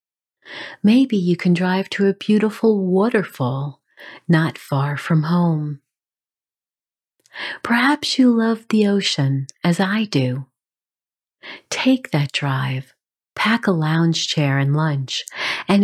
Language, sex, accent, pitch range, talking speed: English, female, American, 140-210 Hz, 115 wpm